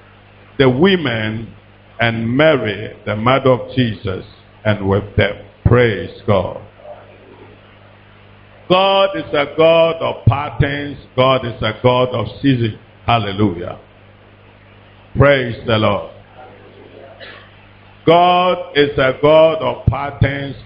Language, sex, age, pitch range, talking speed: English, male, 60-79, 105-145 Hz, 100 wpm